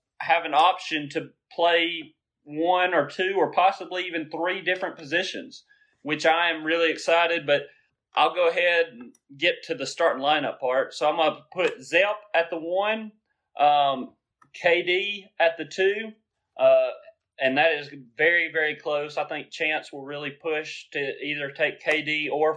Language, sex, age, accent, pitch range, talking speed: English, male, 30-49, American, 145-175 Hz, 165 wpm